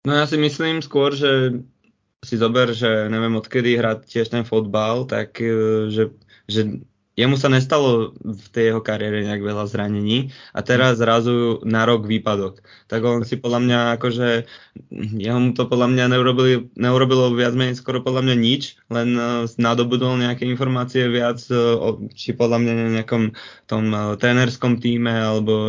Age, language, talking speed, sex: 20-39, Slovak, 150 wpm, male